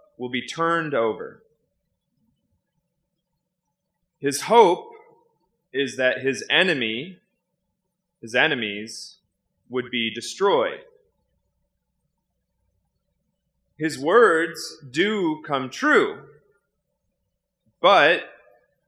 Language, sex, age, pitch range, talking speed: English, male, 30-49, 125-180 Hz, 65 wpm